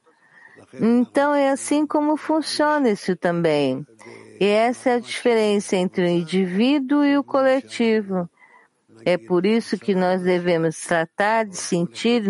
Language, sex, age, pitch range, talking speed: English, female, 50-69, 165-235 Hz, 130 wpm